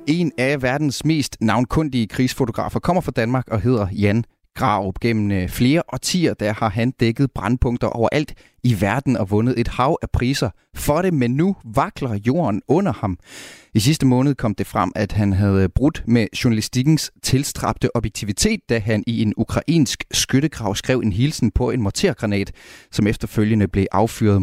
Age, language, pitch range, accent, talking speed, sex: 30-49, Danish, 105-135 Hz, native, 165 wpm, male